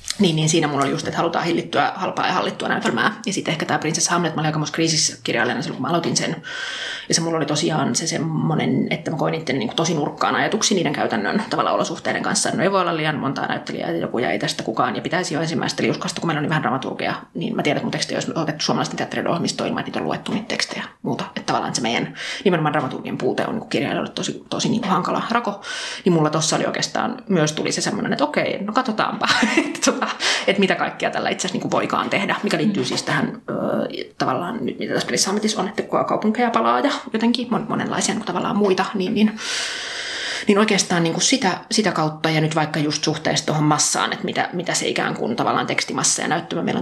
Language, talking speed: Finnish, 220 wpm